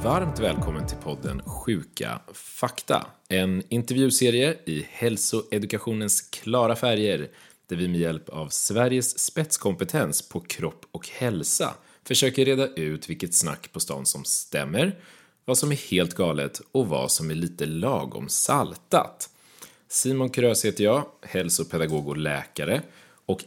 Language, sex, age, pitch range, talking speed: Swedish, male, 30-49, 85-135 Hz, 135 wpm